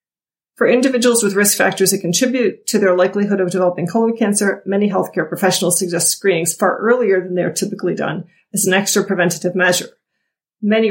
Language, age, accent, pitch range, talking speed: English, 40-59, American, 180-215 Hz, 175 wpm